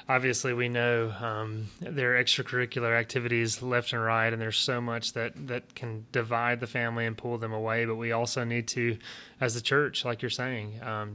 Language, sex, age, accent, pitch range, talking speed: English, male, 30-49, American, 110-125 Hz, 200 wpm